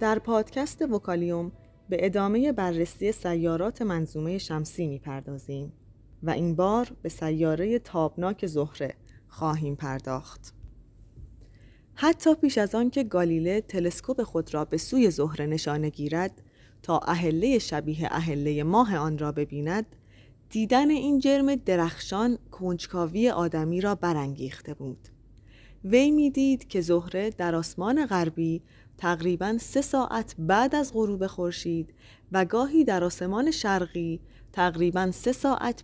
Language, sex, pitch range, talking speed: Persian, female, 150-220 Hz, 125 wpm